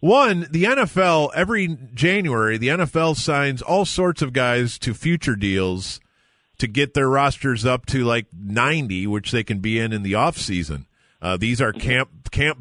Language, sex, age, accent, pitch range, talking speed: English, male, 40-59, American, 120-160 Hz, 170 wpm